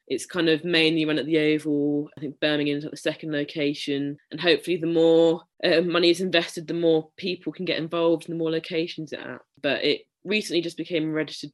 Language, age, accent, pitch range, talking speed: English, 20-39, British, 145-170 Hz, 220 wpm